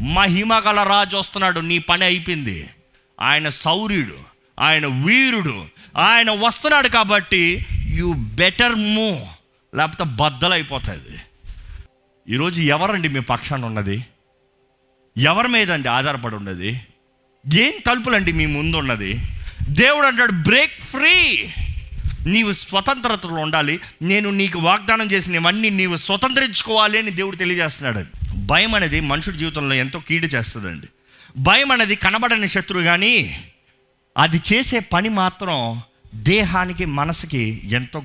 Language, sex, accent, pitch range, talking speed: Telugu, male, native, 125-200 Hz, 105 wpm